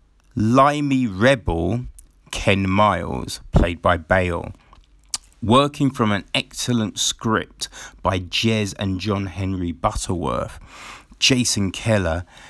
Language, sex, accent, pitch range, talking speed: English, male, British, 95-120 Hz, 95 wpm